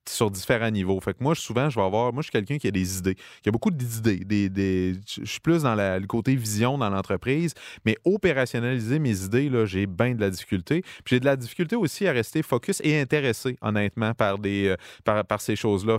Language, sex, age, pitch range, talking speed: French, male, 30-49, 100-125 Hz, 235 wpm